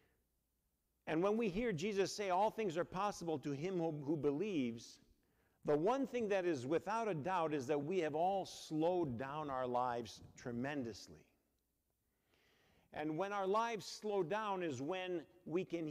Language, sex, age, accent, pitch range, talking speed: English, male, 50-69, American, 150-190 Hz, 160 wpm